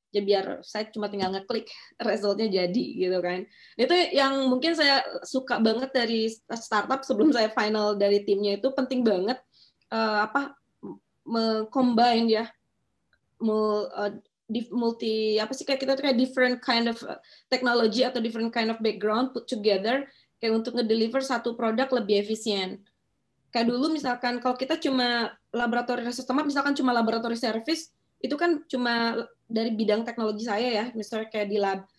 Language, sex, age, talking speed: Indonesian, female, 20-39, 150 wpm